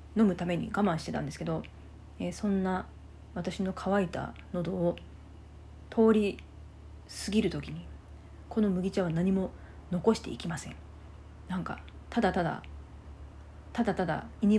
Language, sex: Japanese, female